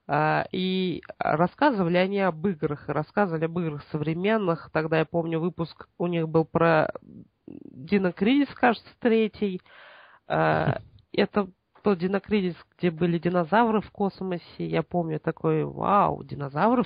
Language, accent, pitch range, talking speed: Russian, native, 165-200 Hz, 115 wpm